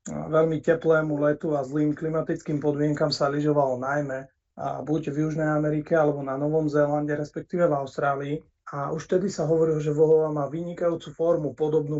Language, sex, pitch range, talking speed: Slovak, male, 145-160 Hz, 165 wpm